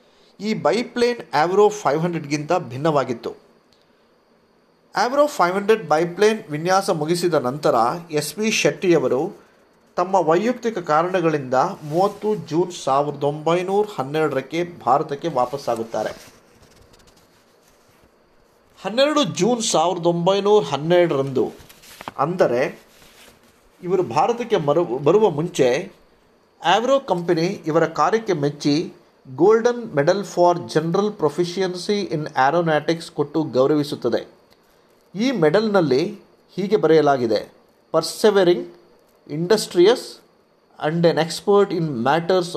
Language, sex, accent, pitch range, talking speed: Kannada, male, native, 150-200 Hz, 85 wpm